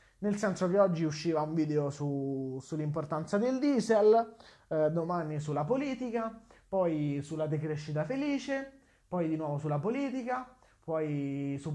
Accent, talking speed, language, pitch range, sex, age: native, 130 wpm, Italian, 150-225 Hz, male, 20-39